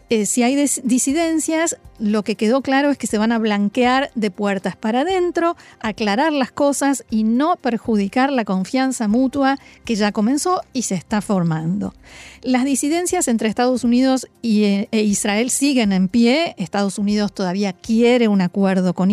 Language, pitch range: Spanish, 210-275 Hz